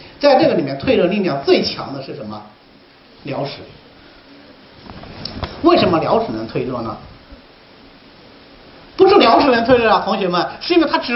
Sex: male